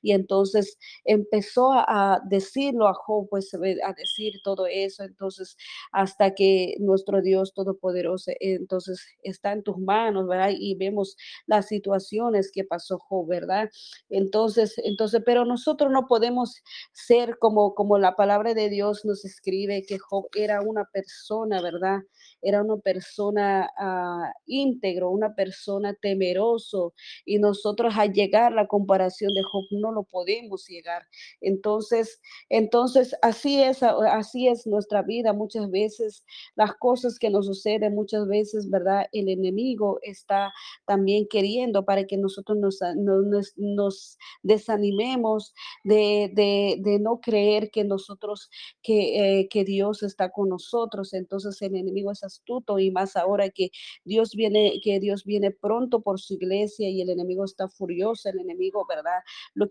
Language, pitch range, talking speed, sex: Spanish, 195-215 Hz, 140 wpm, female